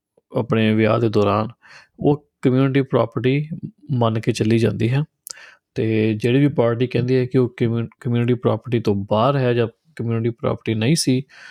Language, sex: Punjabi, male